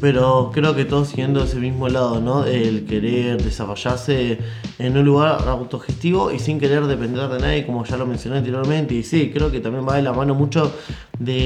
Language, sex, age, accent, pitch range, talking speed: English, male, 20-39, Argentinian, 120-140 Hz, 200 wpm